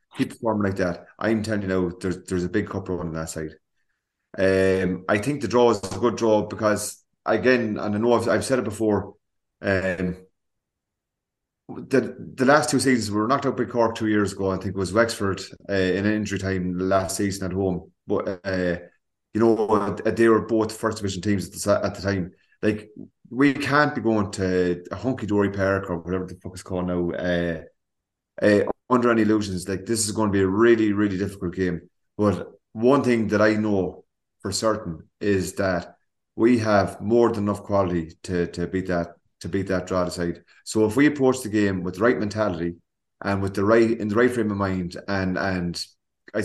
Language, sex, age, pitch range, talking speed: English, male, 30-49, 90-110 Hz, 210 wpm